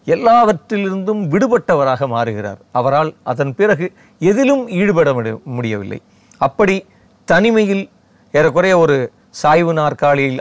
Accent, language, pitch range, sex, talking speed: native, Tamil, 130-190 Hz, male, 90 wpm